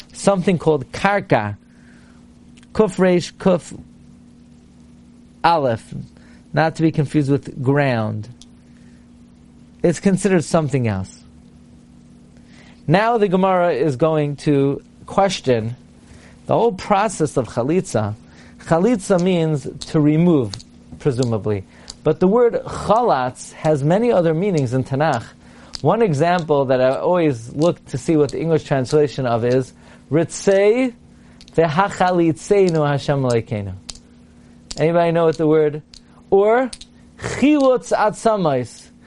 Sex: male